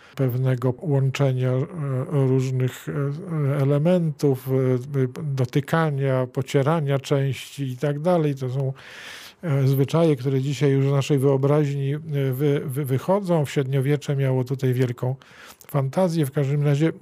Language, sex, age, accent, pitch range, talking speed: Polish, male, 50-69, native, 130-145 Hz, 100 wpm